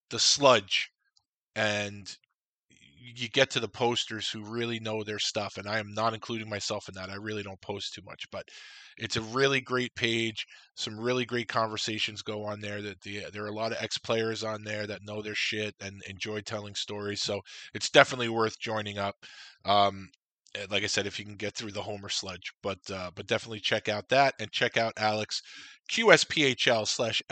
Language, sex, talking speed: English, male, 200 wpm